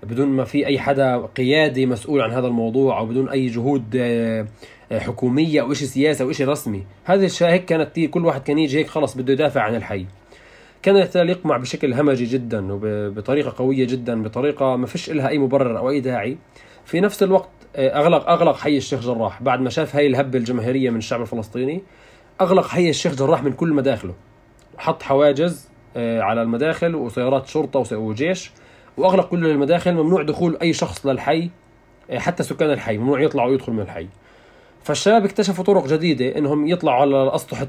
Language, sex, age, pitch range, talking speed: Arabic, male, 20-39, 125-160 Hz, 170 wpm